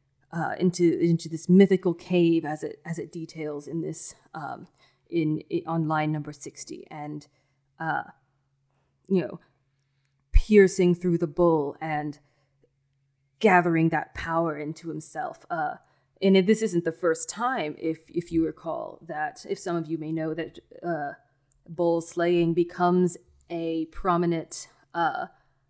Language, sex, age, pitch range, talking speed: English, female, 20-39, 150-175 Hz, 140 wpm